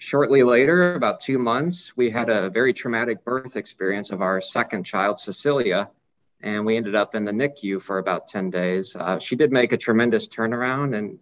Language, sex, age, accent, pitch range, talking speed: English, male, 50-69, American, 105-125 Hz, 195 wpm